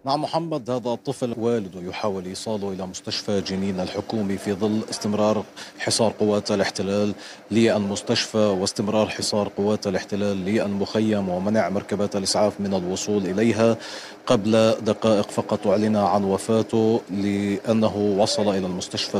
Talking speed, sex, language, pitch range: 125 wpm, male, Arabic, 100-110 Hz